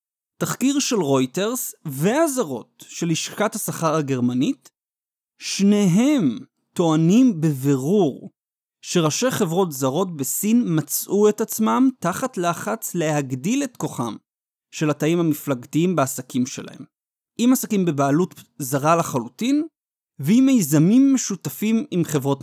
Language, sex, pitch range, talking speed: Hebrew, male, 145-220 Hz, 100 wpm